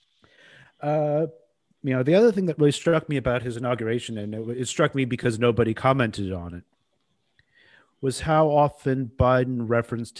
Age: 40-59